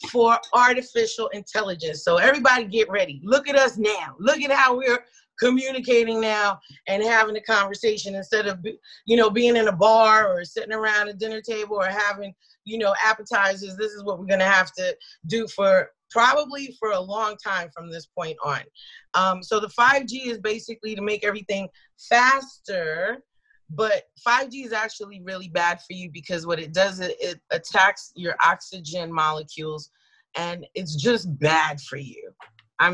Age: 30-49